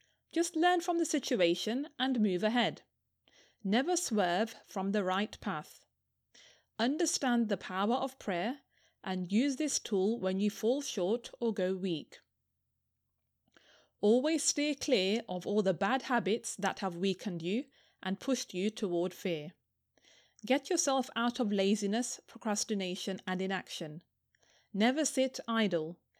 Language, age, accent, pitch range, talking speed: English, 30-49, British, 190-260 Hz, 135 wpm